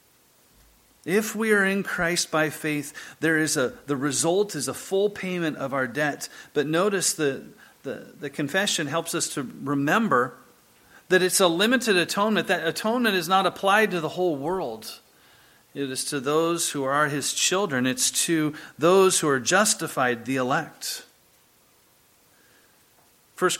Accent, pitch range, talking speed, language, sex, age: American, 135-185 Hz, 155 wpm, English, male, 40-59